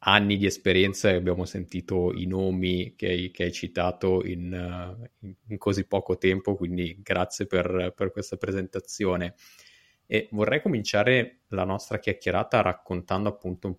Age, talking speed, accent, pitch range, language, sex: 30-49, 140 wpm, native, 90-95 Hz, Italian, male